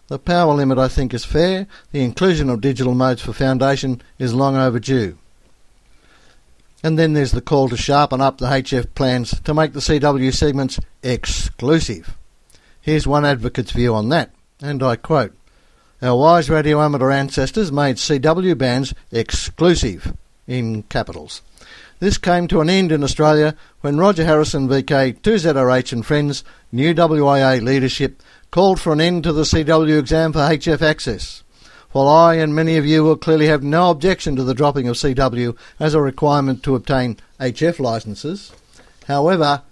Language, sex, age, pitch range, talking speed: English, male, 60-79, 125-155 Hz, 160 wpm